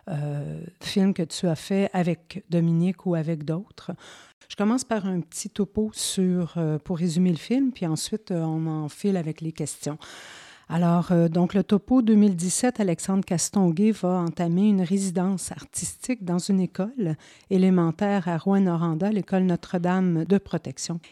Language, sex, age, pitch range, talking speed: French, female, 50-69, 170-200 Hz, 155 wpm